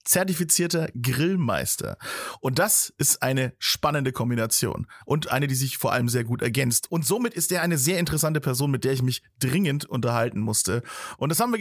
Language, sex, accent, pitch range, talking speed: German, male, German, 135-180 Hz, 185 wpm